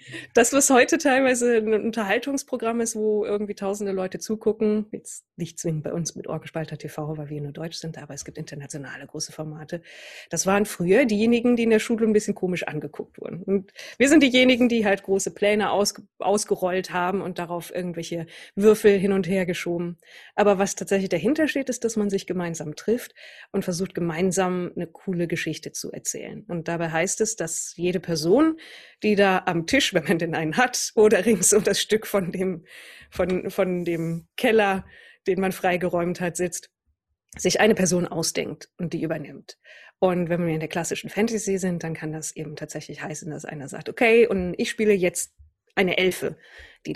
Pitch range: 165-215 Hz